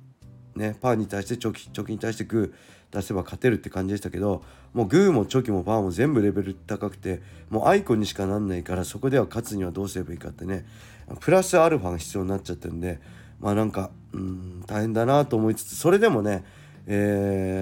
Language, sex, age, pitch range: Japanese, male, 40-59, 100-130 Hz